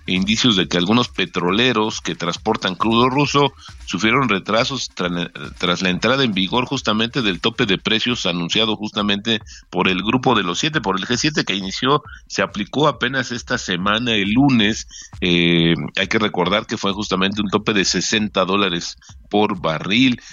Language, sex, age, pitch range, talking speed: Spanish, male, 50-69, 95-120 Hz, 170 wpm